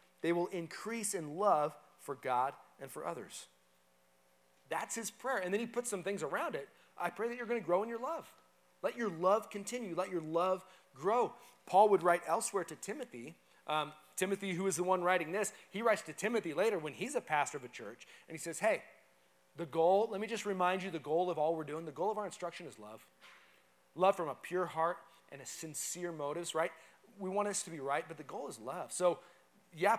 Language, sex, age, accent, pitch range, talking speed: English, male, 30-49, American, 150-195 Hz, 225 wpm